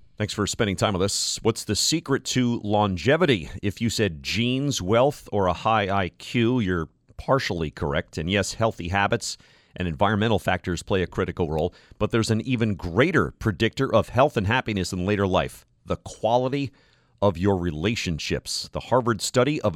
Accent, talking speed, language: American, 175 wpm, English